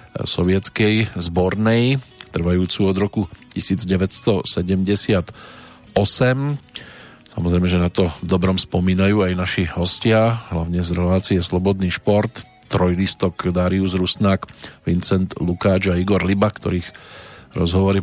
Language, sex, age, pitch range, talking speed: Slovak, male, 40-59, 90-110 Hz, 105 wpm